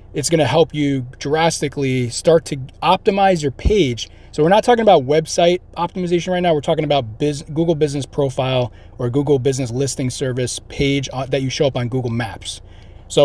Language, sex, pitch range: English, male, 125-160 Hz